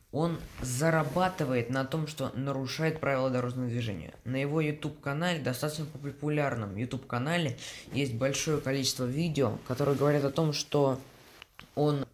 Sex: female